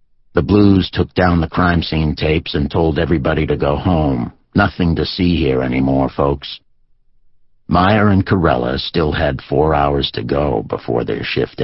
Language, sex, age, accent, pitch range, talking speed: English, male, 60-79, American, 75-105 Hz, 165 wpm